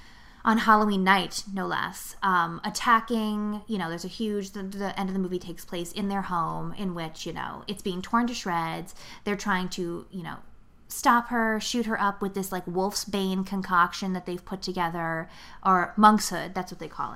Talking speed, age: 205 wpm, 20-39